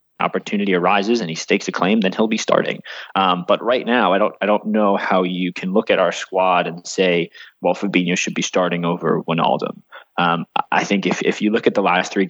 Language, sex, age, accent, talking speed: English, male, 20-39, American, 230 wpm